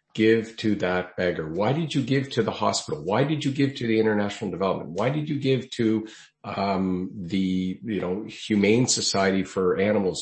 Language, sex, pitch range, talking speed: English, male, 90-115 Hz, 190 wpm